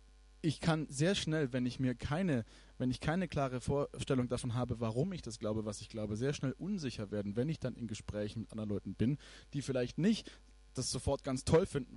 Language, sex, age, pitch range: German, male, 20-39, 110-145 Hz